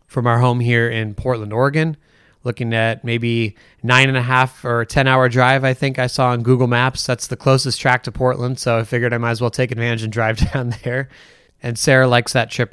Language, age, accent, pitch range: English, 30-49, American, 110-125 Hz